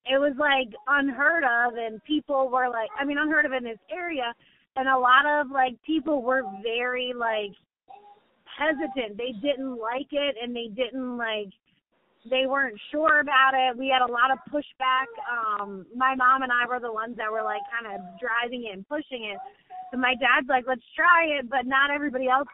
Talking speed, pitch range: 195 wpm, 235-280 Hz